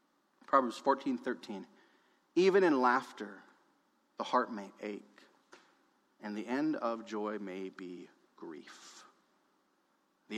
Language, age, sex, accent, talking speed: English, 30-49, male, American, 110 wpm